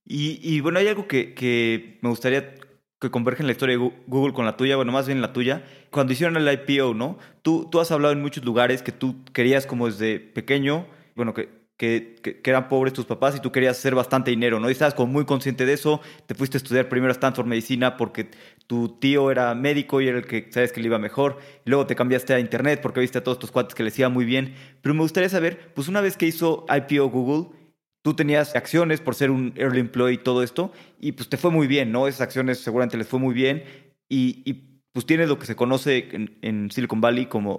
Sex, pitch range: male, 120-145 Hz